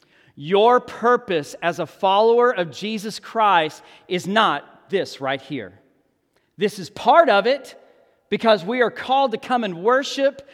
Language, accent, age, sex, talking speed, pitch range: English, American, 40-59, male, 150 wpm, 180-245 Hz